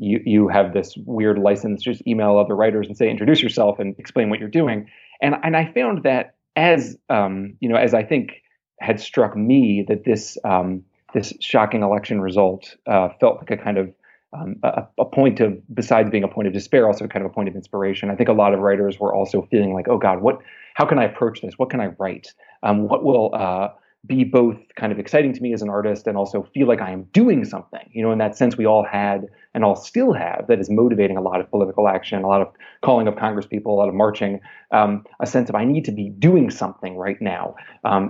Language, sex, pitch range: English, male, 100-110 Hz